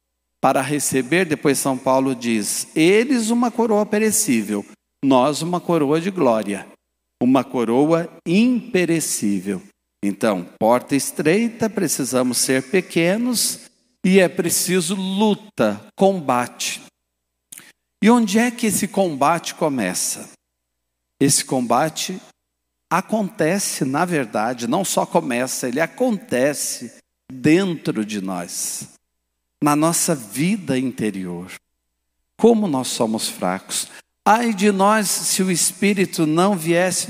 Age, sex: 60-79, male